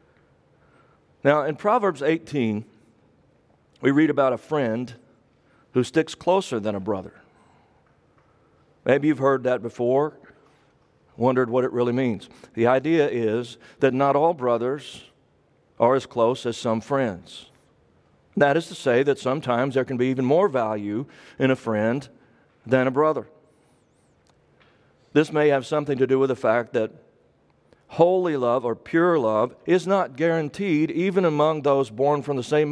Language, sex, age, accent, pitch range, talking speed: English, male, 40-59, American, 120-155 Hz, 150 wpm